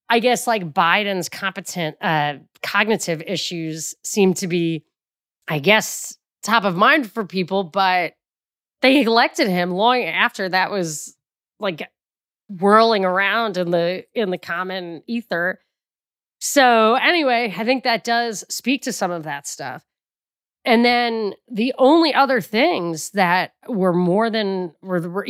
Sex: female